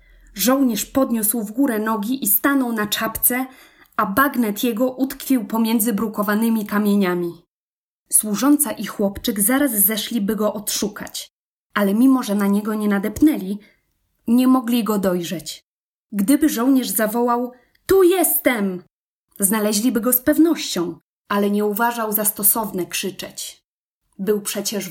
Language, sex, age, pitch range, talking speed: Polish, female, 20-39, 200-250 Hz, 125 wpm